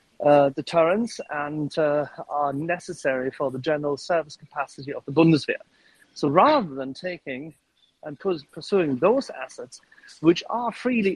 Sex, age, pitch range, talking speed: male, 40-59, 150-205 Hz, 140 wpm